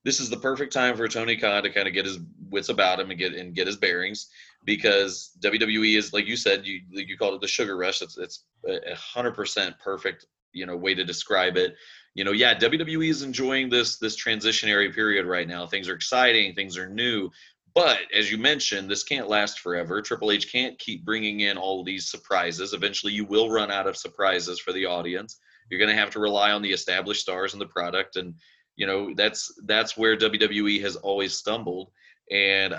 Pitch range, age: 90-110 Hz, 30-49